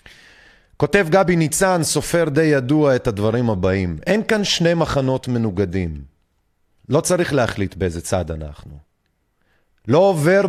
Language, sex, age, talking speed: Hebrew, male, 30-49, 125 wpm